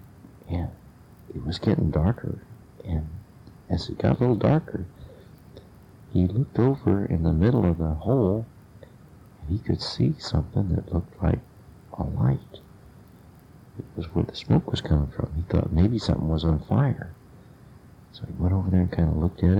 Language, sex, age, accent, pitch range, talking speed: English, male, 60-79, American, 80-110 Hz, 170 wpm